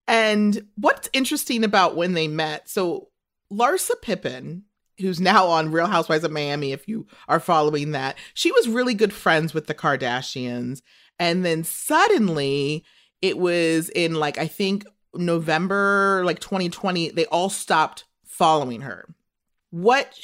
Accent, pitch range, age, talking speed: American, 160-225 Hz, 30-49, 140 wpm